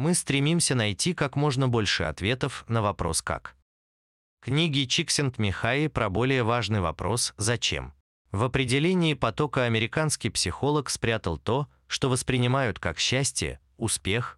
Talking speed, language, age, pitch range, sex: 125 wpm, Russian, 30-49, 90-135 Hz, male